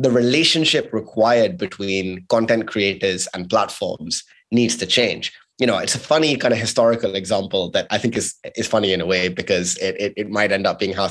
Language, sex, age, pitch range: English, male, 20-39, 105-125 Hz